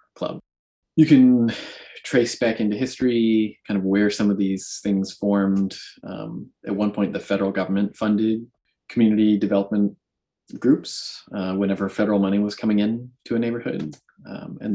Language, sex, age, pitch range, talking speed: English, male, 20-39, 95-110 Hz, 155 wpm